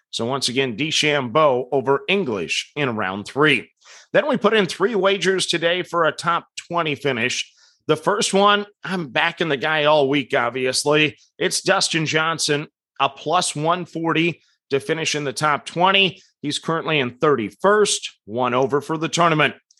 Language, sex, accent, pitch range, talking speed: English, male, American, 145-185 Hz, 160 wpm